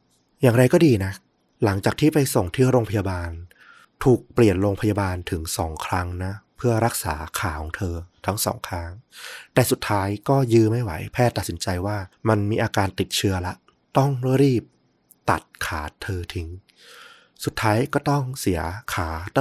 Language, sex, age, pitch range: Thai, male, 20-39, 90-120 Hz